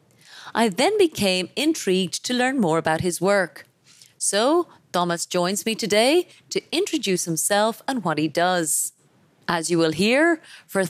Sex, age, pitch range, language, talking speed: female, 30-49, 170-240 Hz, English, 150 wpm